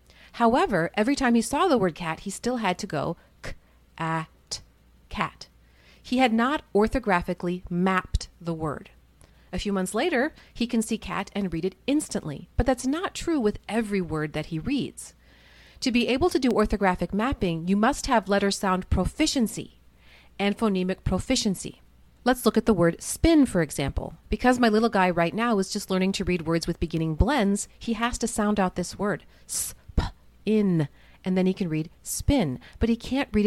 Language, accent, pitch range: English, American, 165-225 Hz